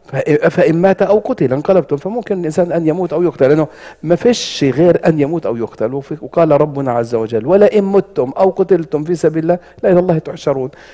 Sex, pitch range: male, 120-180 Hz